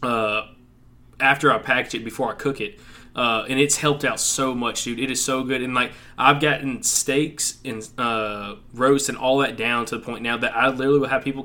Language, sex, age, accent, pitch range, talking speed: English, male, 20-39, American, 115-135 Hz, 225 wpm